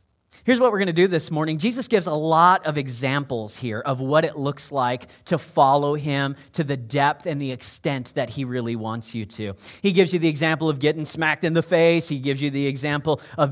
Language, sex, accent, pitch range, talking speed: English, male, American, 150-220 Hz, 225 wpm